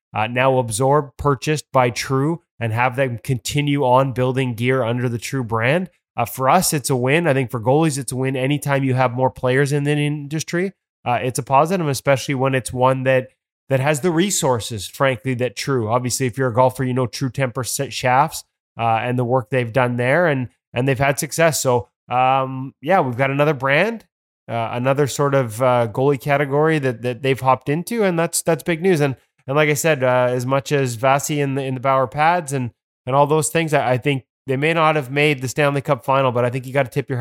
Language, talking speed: English, 225 wpm